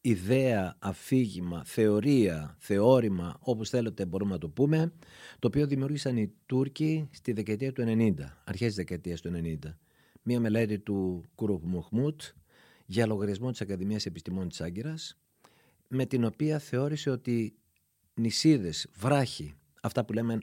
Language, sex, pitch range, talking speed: Greek, male, 100-135 Hz, 130 wpm